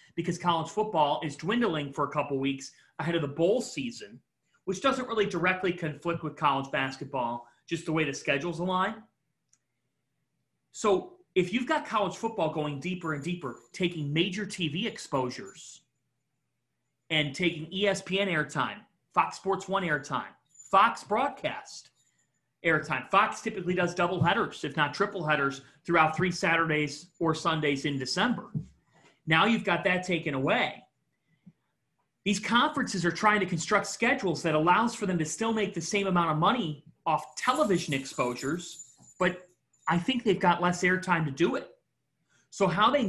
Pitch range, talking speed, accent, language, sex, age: 155-205 Hz, 155 wpm, American, English, male, 30-49